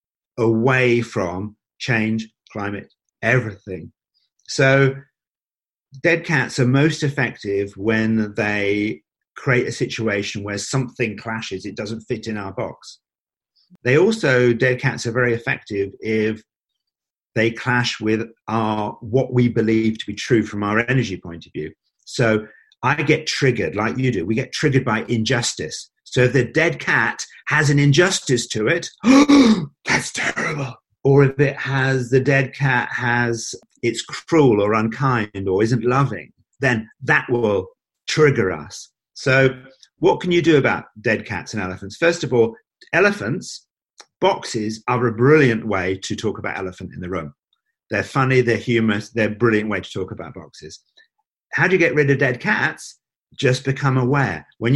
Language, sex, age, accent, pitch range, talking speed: English, male, 50-69, British, 110-135 Hz, 155 wpm